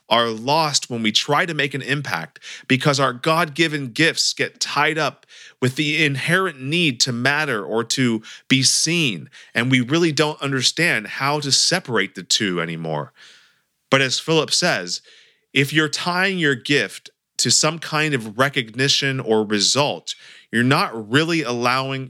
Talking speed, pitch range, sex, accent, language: 155 wpm, 110-145 Hz, male, American, English